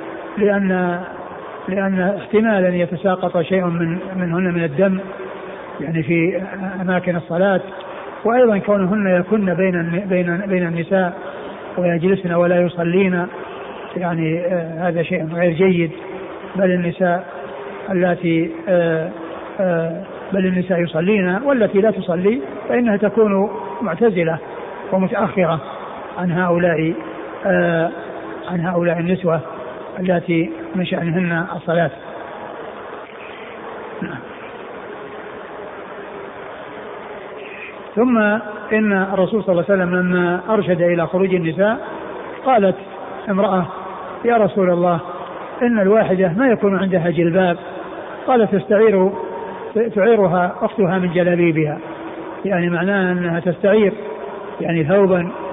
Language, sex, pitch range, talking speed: Arabic, male, 175-195 Hz, 95 wpm